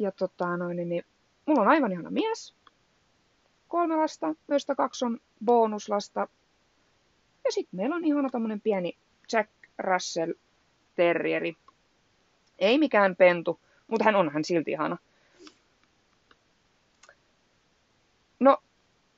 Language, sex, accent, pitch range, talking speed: Finnish, female, native, 185-290 Hz, 100 wpm